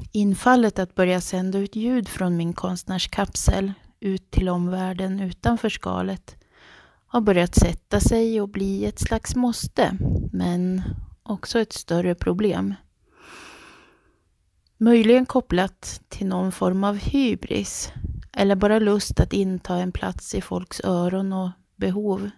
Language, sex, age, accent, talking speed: Swedish, female, 30-49, native, 125 wpm